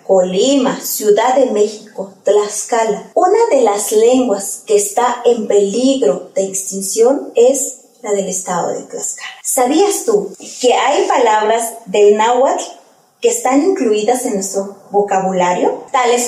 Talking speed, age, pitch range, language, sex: 130 wpm, 30-49, 205-275 Hz, Spanish, female